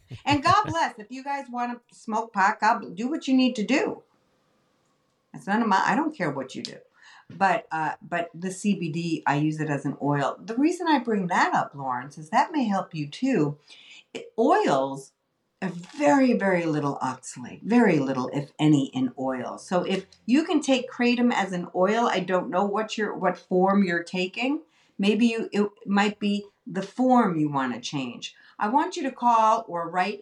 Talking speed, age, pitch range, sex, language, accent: 200 wpm, 50-69, 155-235 Hz, female, English, American